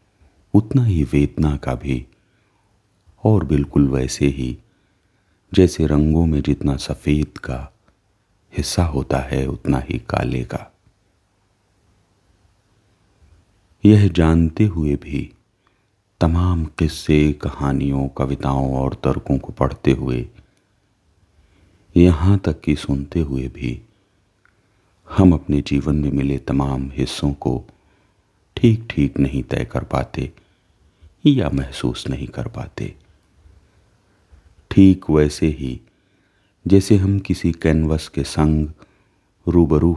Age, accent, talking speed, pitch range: 40-59, native, 105 wpm, 75-100 Hz